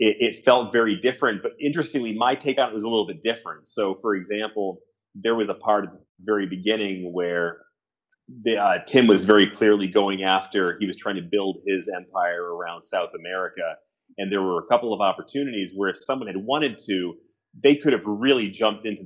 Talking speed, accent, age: 195 wpm, American, 30-49